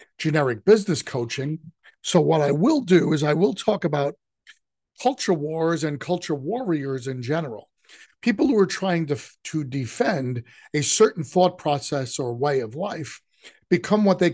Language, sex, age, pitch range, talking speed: English, male, 50-69, 135-185 Hz, 160 wpm